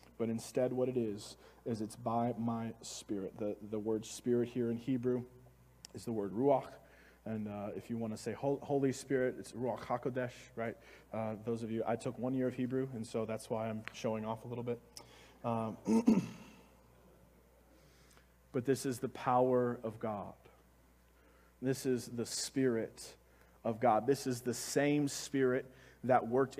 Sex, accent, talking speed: male, American, 170 wpm